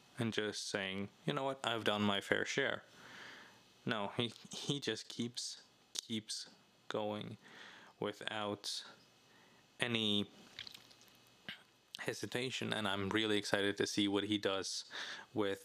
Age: 20-39